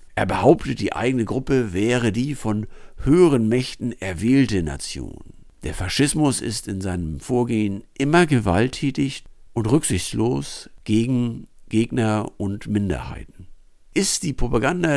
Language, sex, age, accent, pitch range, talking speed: German, male, 60-79, German, 95-130 Hz, 115 wpm